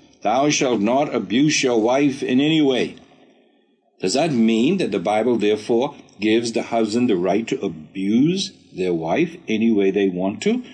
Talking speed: 170 wpm